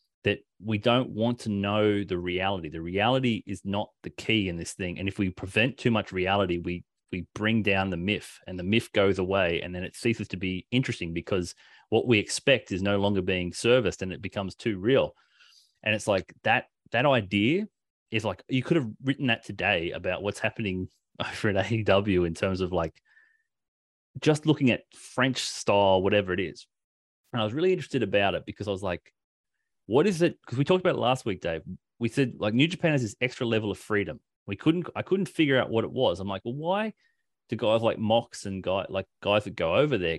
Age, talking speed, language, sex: 30-49, 220 wpm, English, male